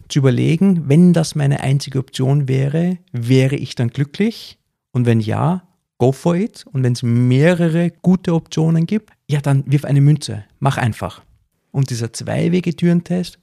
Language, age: German, 40-59